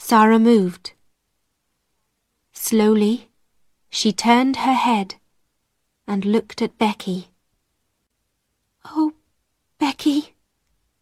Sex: female